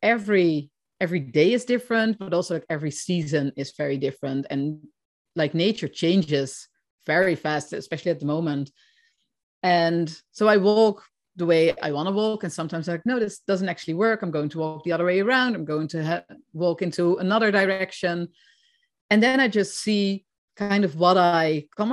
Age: 30-49